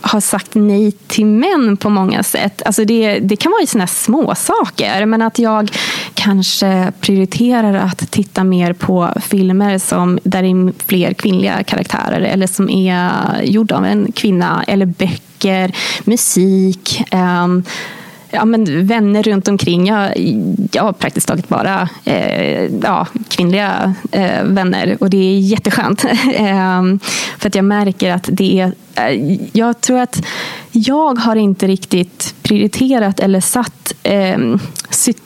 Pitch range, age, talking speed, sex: 190-225 Hz, 20-39, 140 wpm, female